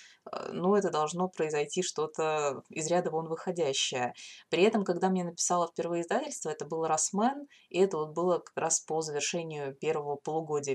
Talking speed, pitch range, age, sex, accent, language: 165 wpm, 155-190 Hz, 20-39, female, native, Russian